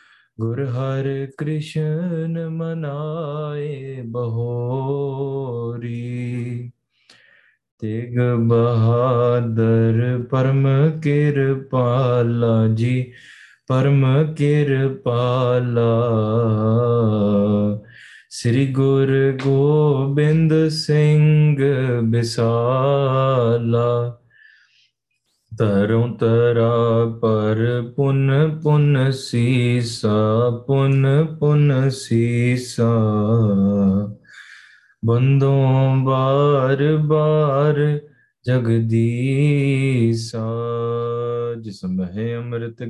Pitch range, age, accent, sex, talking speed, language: 115-140 Hz, 20-39, Indian, male, 30 wpm, English